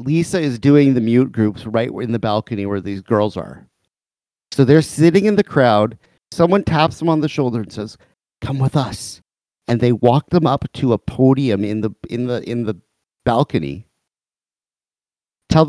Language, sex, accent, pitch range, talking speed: English, male, American, 105-135 Hz, 180 wpm